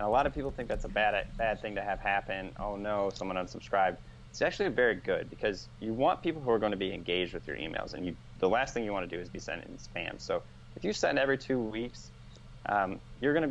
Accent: American